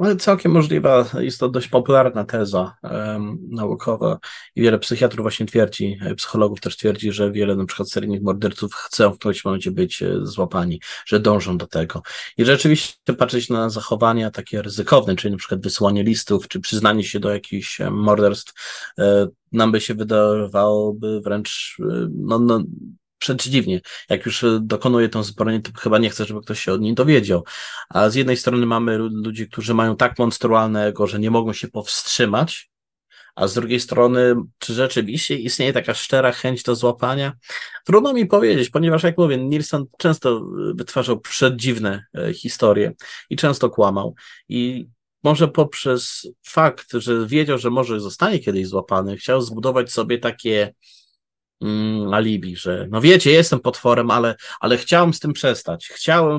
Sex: male